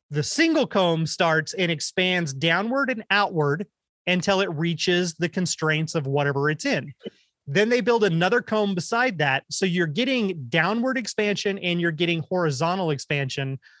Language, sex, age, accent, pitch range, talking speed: English, male, 30-49, American, 155-195 Hz, 150 wpm